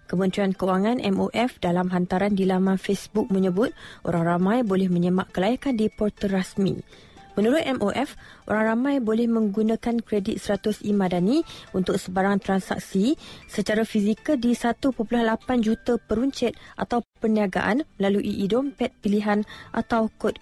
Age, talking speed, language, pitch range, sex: 20-39, 125 wpm, Malay, 195-235 Hz, female